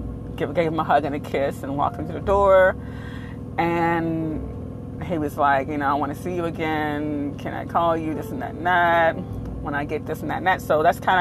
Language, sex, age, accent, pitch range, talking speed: English, female, 30-49, American, 125-200 Hz, 235 wpm